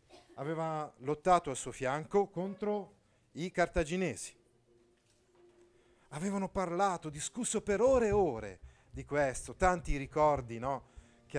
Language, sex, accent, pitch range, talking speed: Italian, male, native, 120-180 Hz, 105 wpm